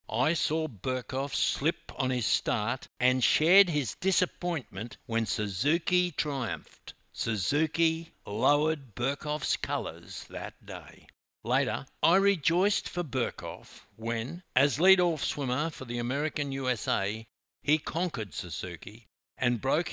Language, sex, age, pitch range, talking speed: English, male, 60-79, 110-155 Hz, 115 wpm